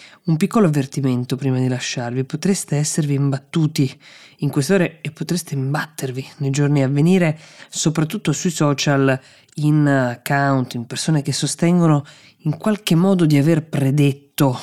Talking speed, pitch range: 135 wpm, 130-155 Hz